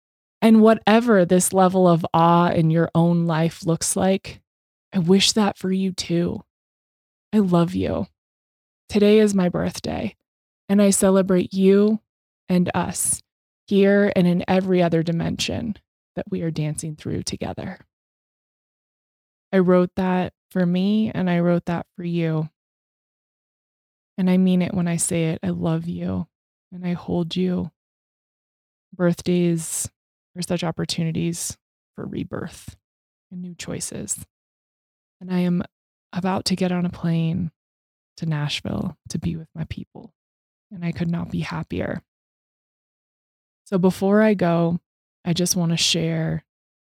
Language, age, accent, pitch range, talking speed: English, 20-39, American, 160-185 Hz, 140 wpm